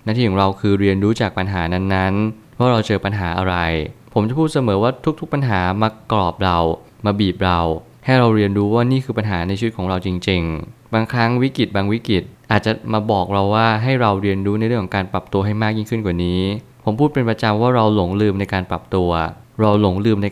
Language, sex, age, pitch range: Thai, male, 20-39, 95-115 Hz